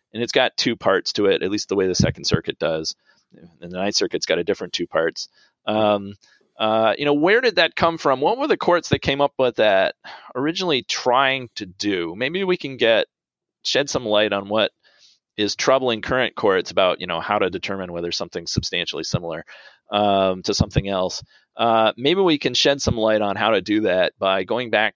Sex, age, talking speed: male, 30-49, 210 wpm